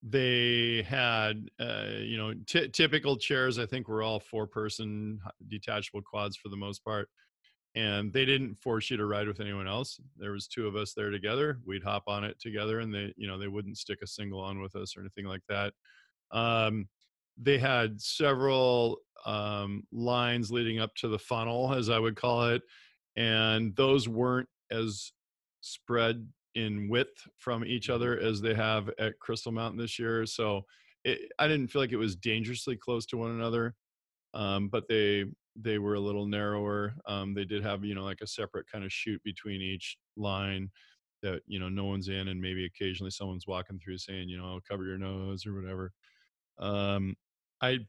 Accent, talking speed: American, 185 wpm